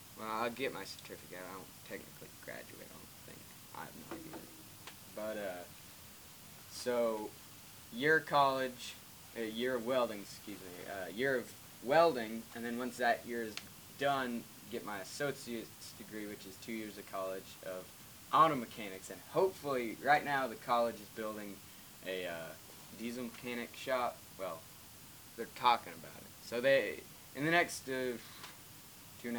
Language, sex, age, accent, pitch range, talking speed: English, male, 20-39, American, 100-120 Hz, 160 wpm